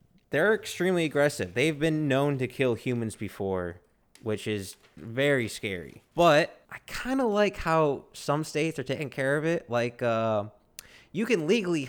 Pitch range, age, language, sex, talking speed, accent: 100-135 Hz, 20-39, English, male, 160 wpm, American